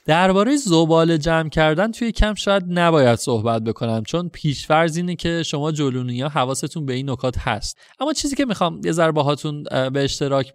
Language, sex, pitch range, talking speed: Persian, male, 130-180 Hz, 170 wpm